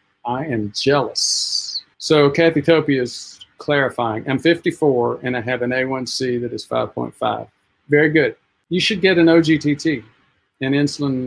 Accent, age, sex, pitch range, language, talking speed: American, 50-69, male, 125-165 Hz, English, 145 wpm